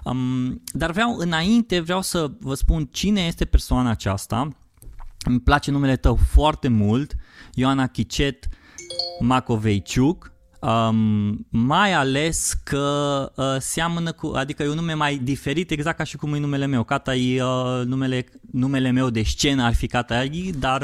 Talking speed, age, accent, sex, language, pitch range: 150 wpm, 20-39, native, male, Romanian, 115-155 Hz